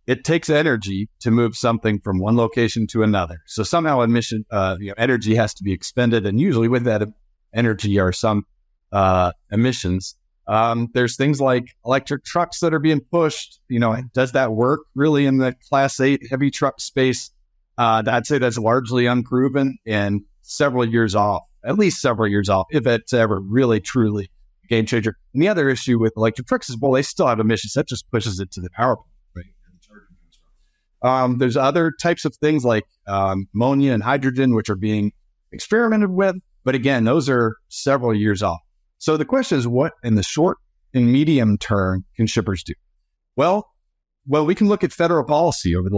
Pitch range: 100-135 Hz